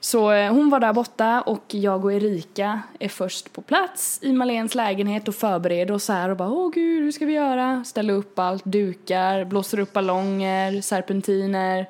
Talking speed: 185 wpm